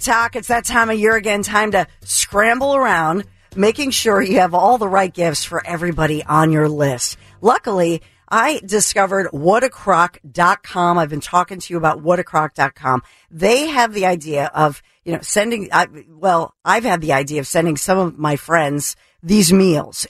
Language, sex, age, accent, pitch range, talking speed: English, female, 50-69, American, 155-210 Hz, 165 wpm